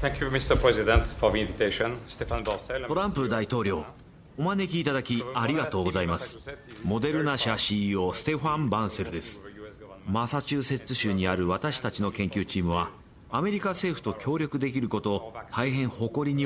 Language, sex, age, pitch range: Japanese, male, 40-59, 95-135 Hz